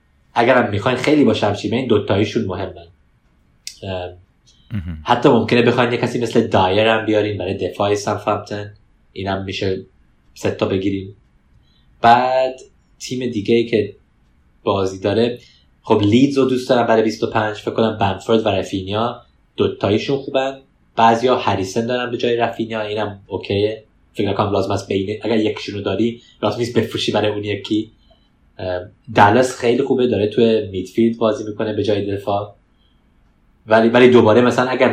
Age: 20-39